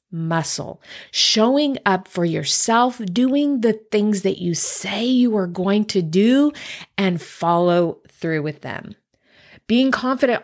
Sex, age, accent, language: female, 30-49, American, English